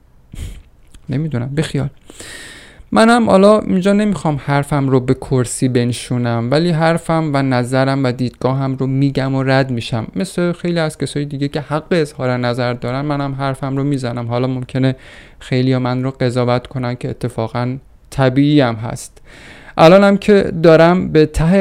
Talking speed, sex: 150 wpm, male